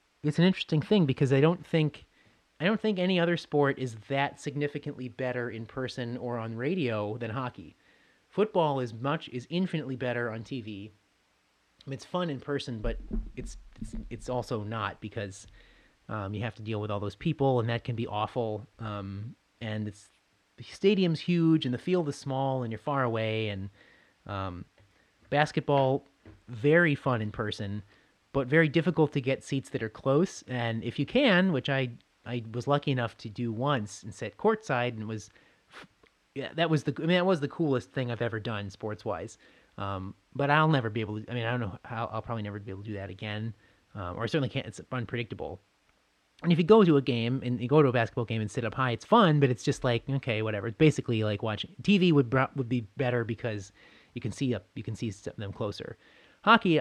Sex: male